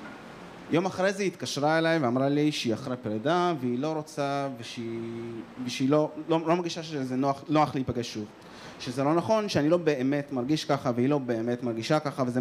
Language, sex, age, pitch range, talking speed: Hebrew, male, 20-39, 115-150 Hz, 200 wpm